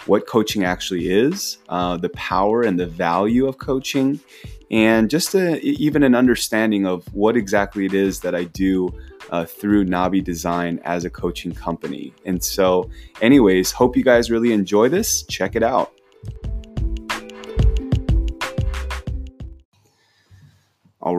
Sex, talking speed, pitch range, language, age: male, 130 wpm, 95-115 Hz, English, 20-39